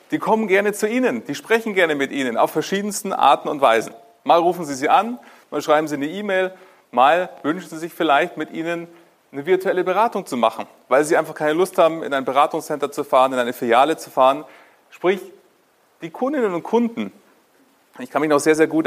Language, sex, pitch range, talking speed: German, male, 150-205 Hz, 205 wpm